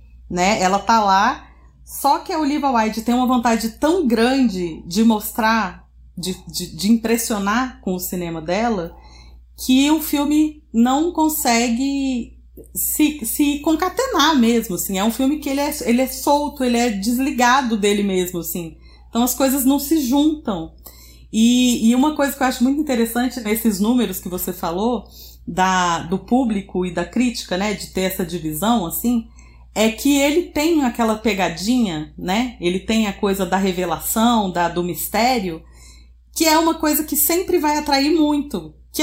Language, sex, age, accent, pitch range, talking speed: English, female, 40-59, Brazilian, 190-275 Hz, 165 wpm